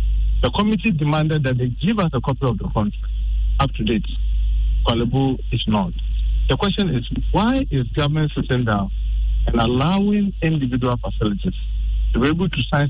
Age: 50-69